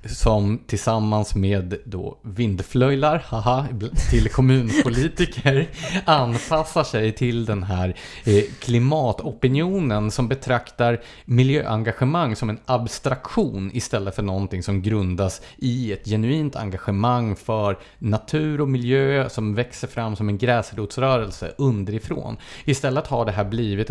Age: 30-49